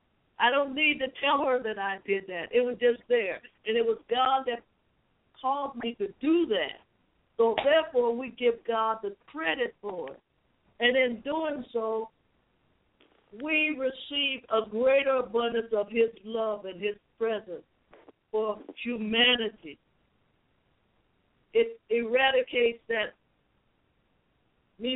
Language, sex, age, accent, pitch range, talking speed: English, female, 60-79, American, 200-255 Hz, 130 wpm